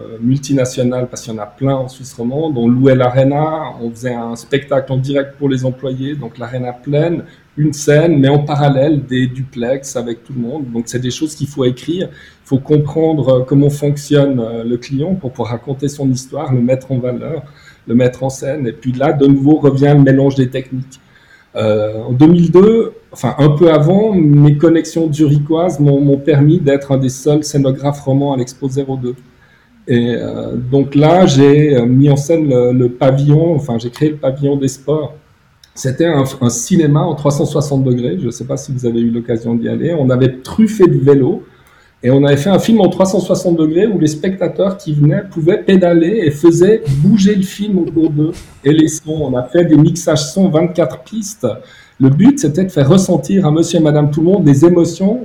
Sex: male